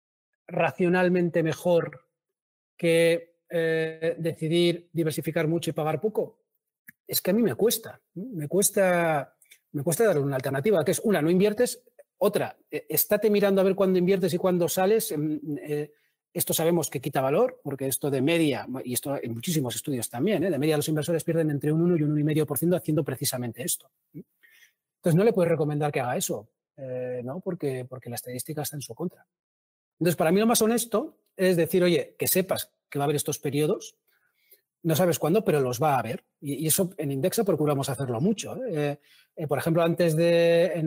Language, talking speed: Spanish, 180 wpm